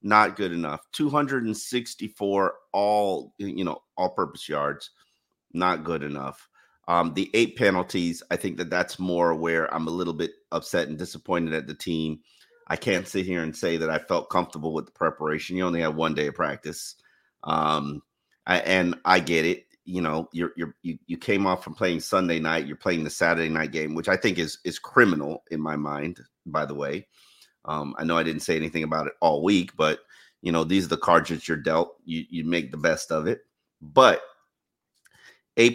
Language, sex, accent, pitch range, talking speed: English, male, American, 80-95 Hz, 200 wpm